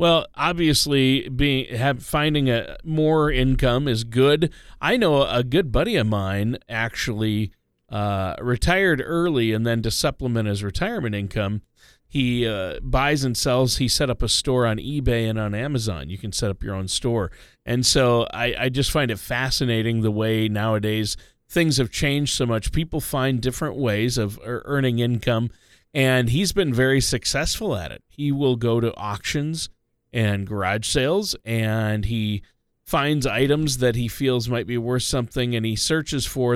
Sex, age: male, 40-59